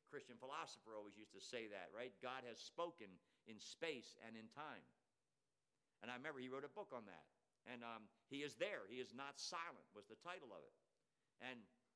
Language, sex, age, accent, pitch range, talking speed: English, male, 50-69, American, 125-165 Hz, 200 wpm